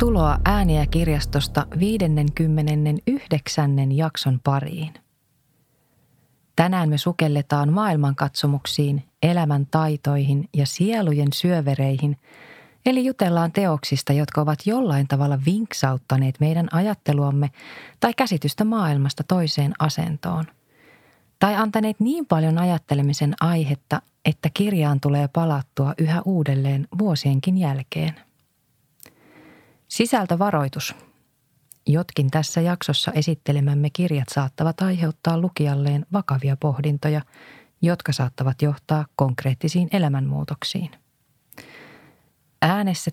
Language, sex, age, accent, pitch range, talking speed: Finnish, female, 30-49, native, 140-165 Hz, 85 wpm